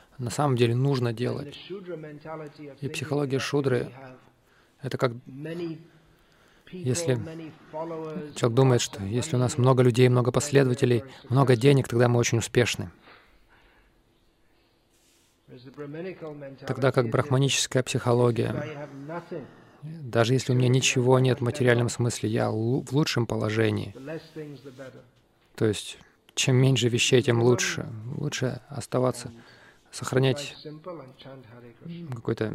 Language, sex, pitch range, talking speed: Russian, male, 120-140 Hz, 100 wpm